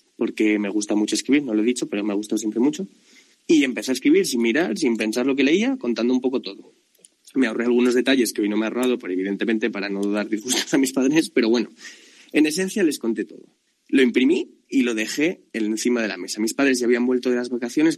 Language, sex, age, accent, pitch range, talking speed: Spanish, male, 20-39, Spanish, 115-145 Hz, 240 wpm